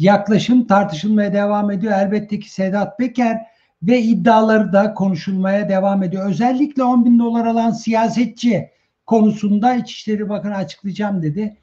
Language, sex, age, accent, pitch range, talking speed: Turkish, male, 60-79, native, 180-215 Hz, 130 wpm